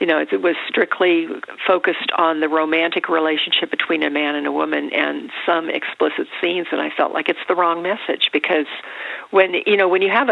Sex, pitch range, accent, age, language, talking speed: female, 160-190 Hz, American, 50-69, English, 205 wpm